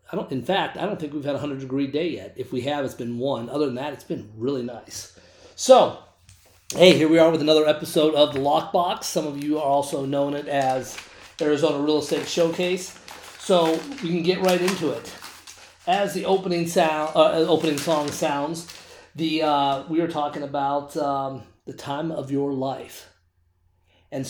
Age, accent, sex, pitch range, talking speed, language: 30-49, American, male, 125-160 Hz, 190 wpm, English